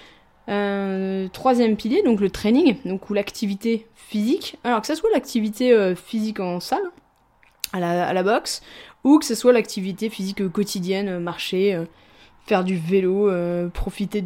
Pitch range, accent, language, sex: 190-240 Hz, French, French, female